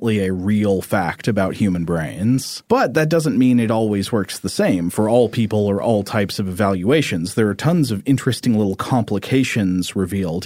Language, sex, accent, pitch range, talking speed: English, male, American, 100-125 Hz, 180 wpm